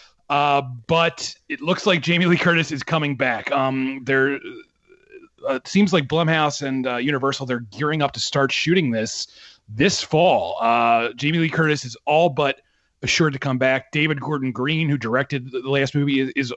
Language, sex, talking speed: English, male, 180 wpm